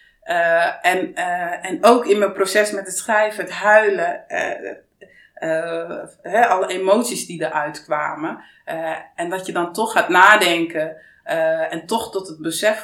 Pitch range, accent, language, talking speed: 170-245 Hz, Dutch, Dutch, 160 wpm